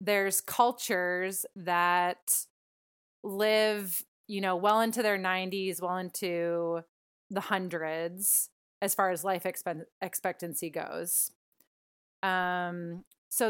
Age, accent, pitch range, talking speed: 20-39, American, 175-205 Hz, 100 wpm